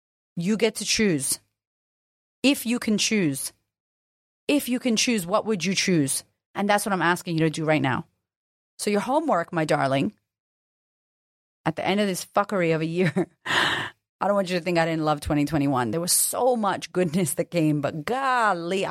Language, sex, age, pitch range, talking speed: English, female, 30-49, 165-210 Hz, 185 wpm